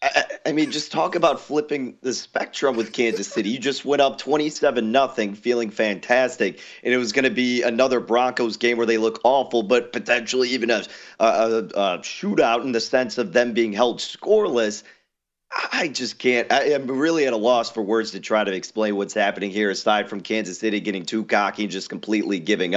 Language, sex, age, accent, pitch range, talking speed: English, male, 30-49, American, 100-125 Hz, 205 wpm